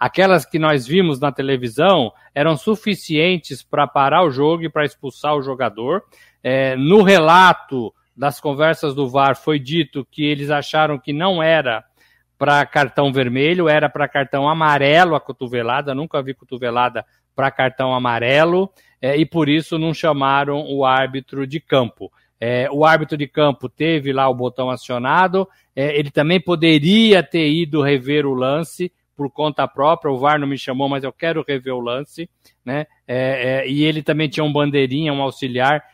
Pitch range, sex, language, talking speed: 135-165 Hz, male, Portuguese, 160 wpm